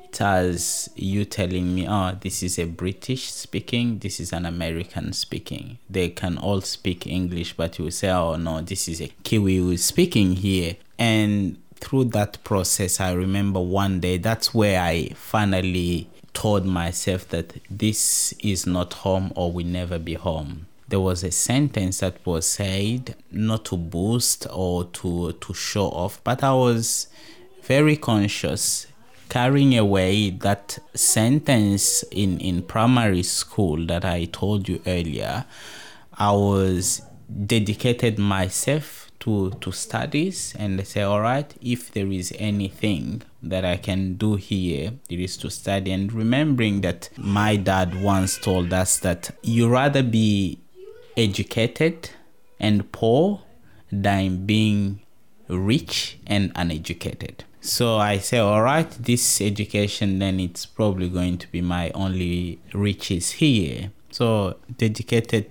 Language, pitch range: English, 90-115 Hz